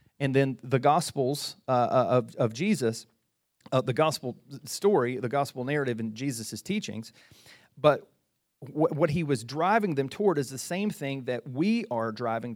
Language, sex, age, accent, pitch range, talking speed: English, male, 40-59, American, 130-175 Hz, 165 wpm